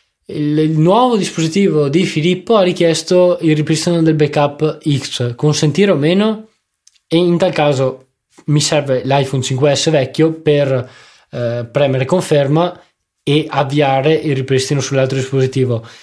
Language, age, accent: Italian, 20-39, native